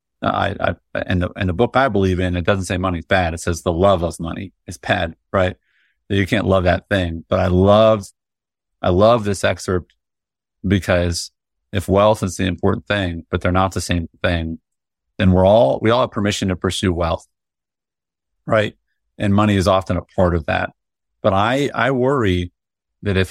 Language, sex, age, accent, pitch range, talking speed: English, male, 30-49, American, 90-105 Hz, 190 wpm